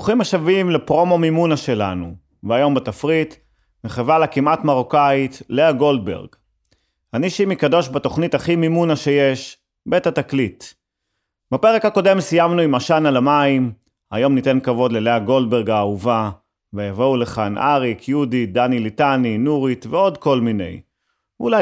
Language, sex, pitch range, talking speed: Hebrew, male, 120-160 Hz, 130 wpm